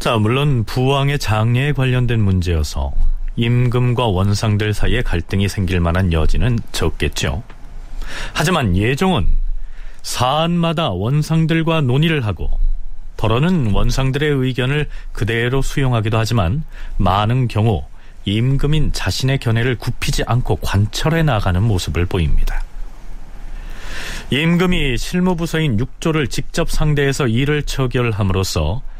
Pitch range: 100-145 Hz